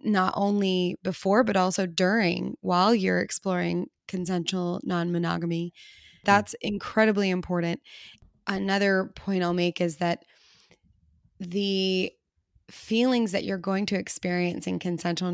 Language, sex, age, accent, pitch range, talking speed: English, female, 20-39, American, 175-200 Hz, 115 wpm